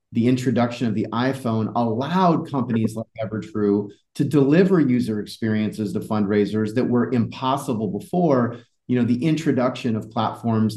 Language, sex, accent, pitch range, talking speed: English, male, American, 110-145 Hz, 140 wpm